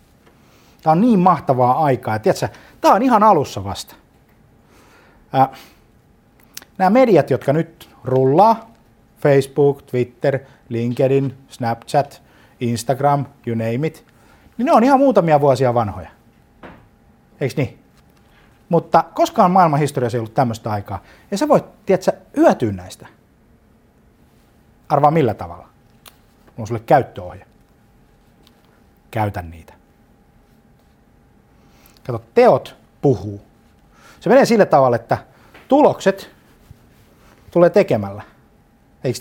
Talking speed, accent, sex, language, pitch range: 105 wpm, native, male, Finnish, 105-145 Hz